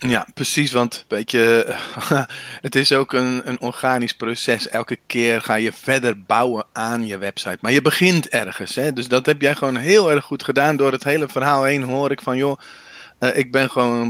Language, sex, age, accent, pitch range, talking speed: Dutch, male, 40-59, Dutch, 120-155 Hz, 195 wpm